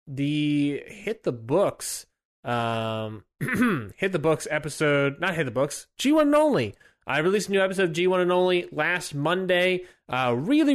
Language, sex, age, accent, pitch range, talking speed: English, male, 20-39, American, 120-165 Hz, 160 wpm